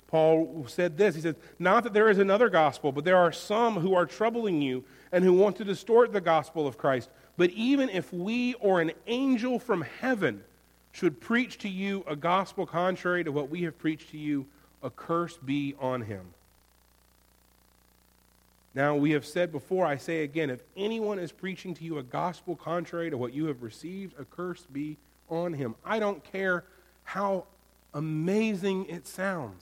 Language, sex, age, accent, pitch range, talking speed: English, male, 40-59, American, 125-190 Hz, 180 wpm